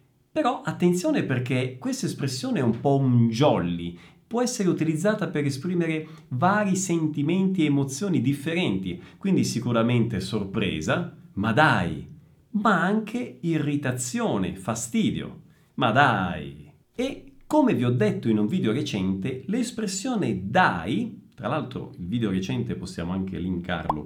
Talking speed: 125 wpm